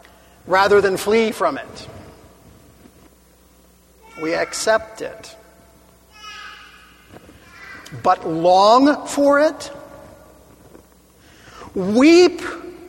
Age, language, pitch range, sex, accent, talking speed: 40-59, English, 205-300 Hz, male, American, 60 wpm